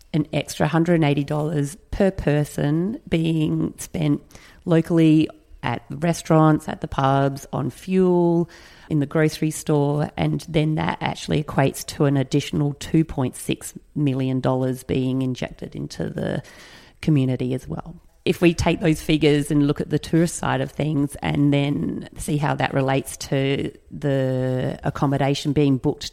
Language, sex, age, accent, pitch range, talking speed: English, female, 40-59, Australian, 140-160 Hz, 140 wpm